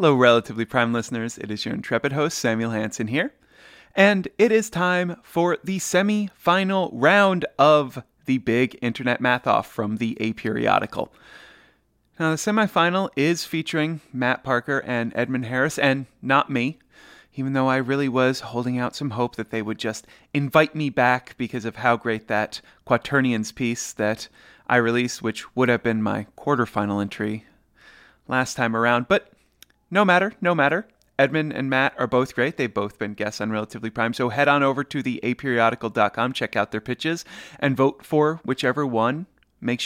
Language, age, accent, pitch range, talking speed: English, 30-49, American, 115-160 Hz, 170 wpm